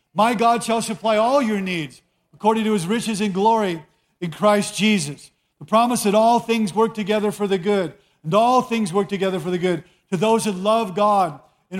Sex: male